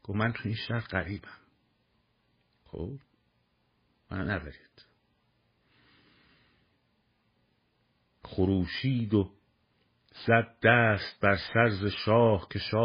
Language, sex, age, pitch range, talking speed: Persian, male, 50-69, 105-125 Hz, 85 wpm